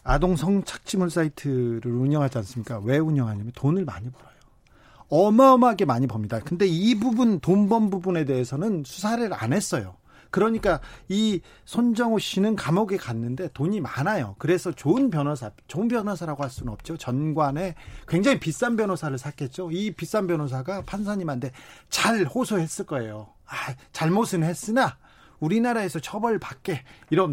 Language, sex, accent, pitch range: Korean, male, native, 140-215 Hz